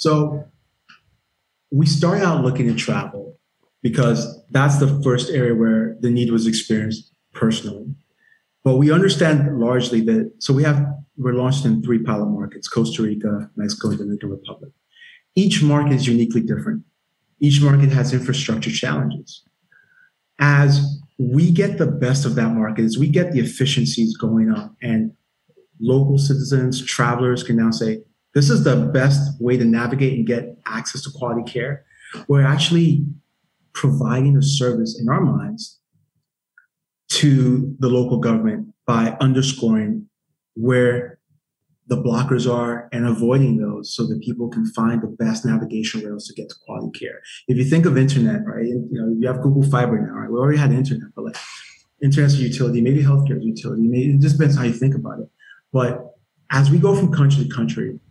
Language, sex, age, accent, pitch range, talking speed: English, male, 30-49, American, 115-145 Hz, 165 wpm